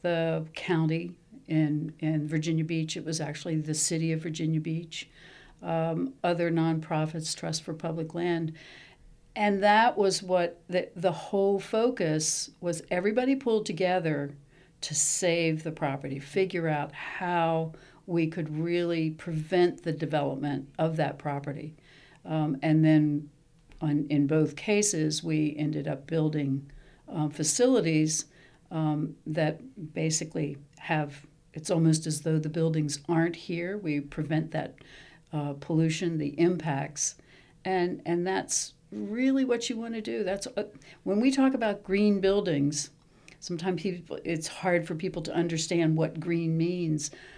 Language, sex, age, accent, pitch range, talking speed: English, female, 60-79, American, 155-185 Hz, 140 wpm